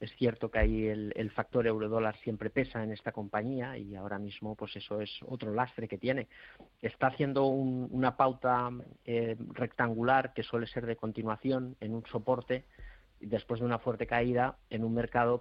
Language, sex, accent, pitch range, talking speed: Spanish, male, Spanish, 105-125 Hz, 180 wpm